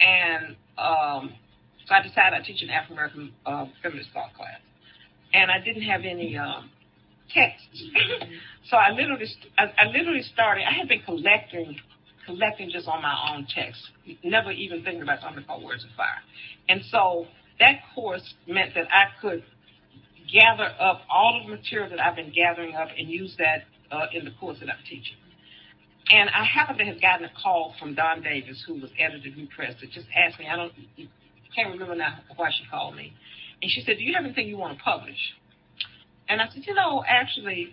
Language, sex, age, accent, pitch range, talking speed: English, female, 50-69, American, 165-220 Hz, 195 wpm